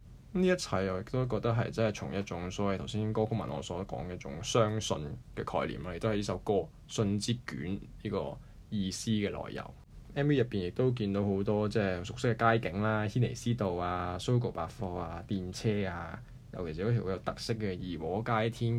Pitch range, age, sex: 95-120 Hz, 20-39, male